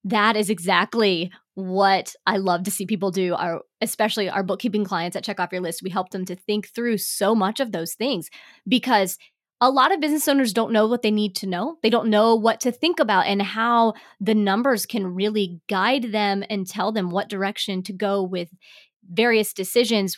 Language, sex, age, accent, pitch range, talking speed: English, female, 20-39, American, 190-230 Hz, 205 wpm